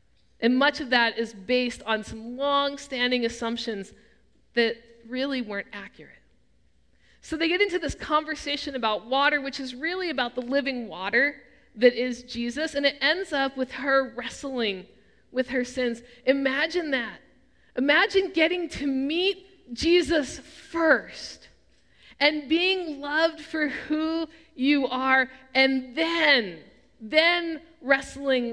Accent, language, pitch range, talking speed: American, English, 245-290 Hz, 130 wpm